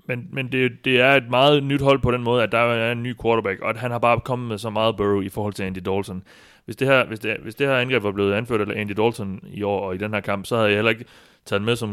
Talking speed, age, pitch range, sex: 290 wpm, 30-49, 105-130 Hz, male